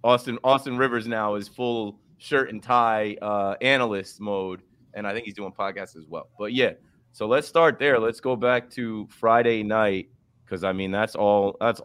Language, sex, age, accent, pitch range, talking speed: English, male, 30-49, American, 105-130 Hz, 190 wpm